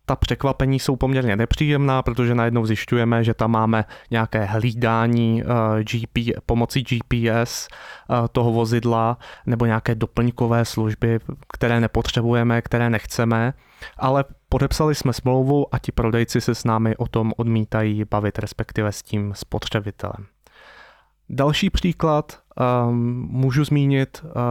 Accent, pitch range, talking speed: native, 115-130 Hz, 115 wpm